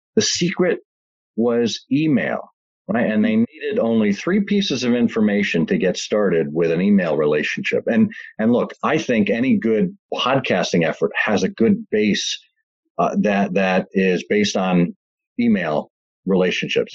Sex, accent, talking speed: male, American, 145 wpm